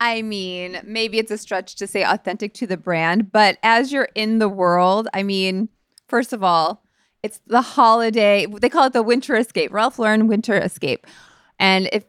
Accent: American